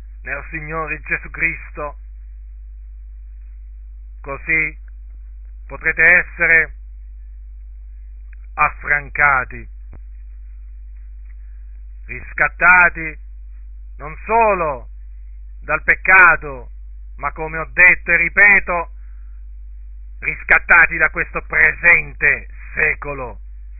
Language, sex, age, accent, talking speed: Italian, male, 50-69, native, 65 wpm